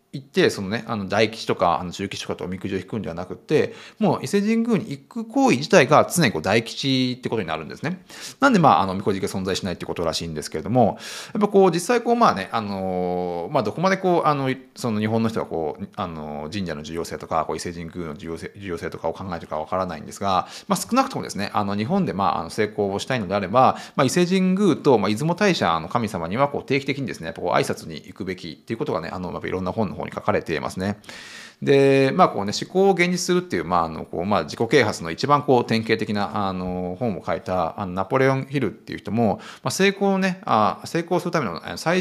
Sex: male